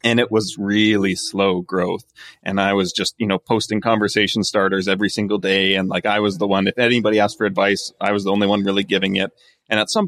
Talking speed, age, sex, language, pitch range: 240 wpm, 30-49, male, English, 95-115 Hz